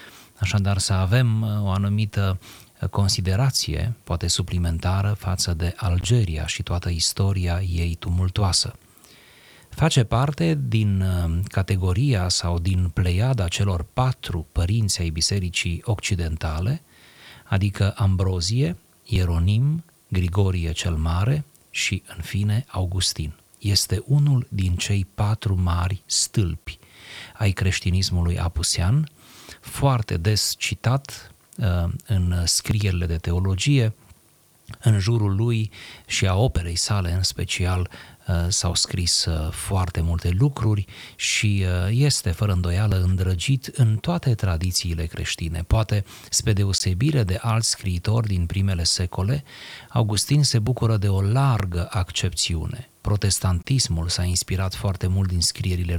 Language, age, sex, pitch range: Romanian, 30-49, male, 90-110 Hz